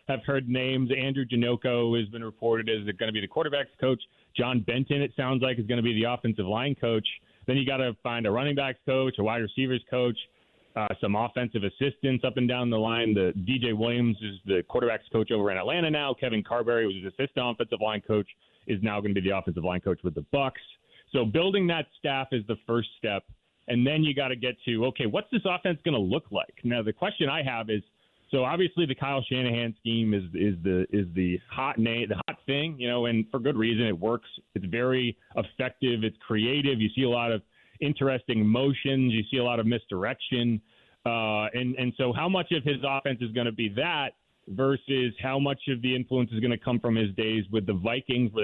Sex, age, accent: male, 30-49, American